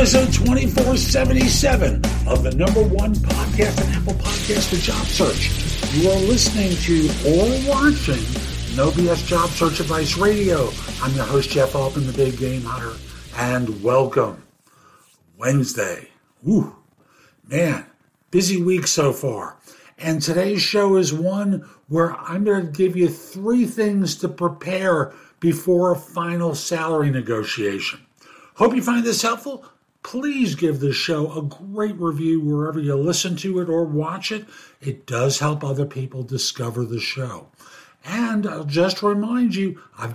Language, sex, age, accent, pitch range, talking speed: English, male, 50-69, American, 130-175 Hz, 145 wpm